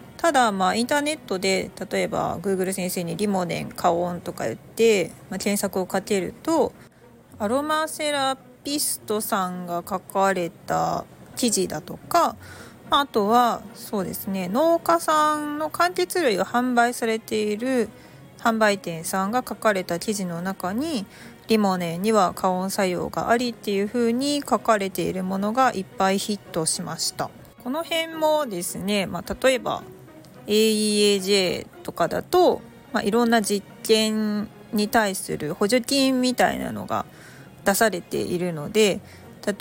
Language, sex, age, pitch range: Japanese, female, 40-59, 185-240 Hz